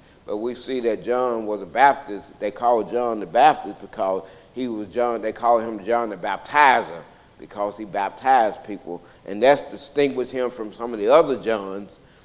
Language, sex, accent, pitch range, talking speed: English, male, American, 105-130 Hz, 180 wpm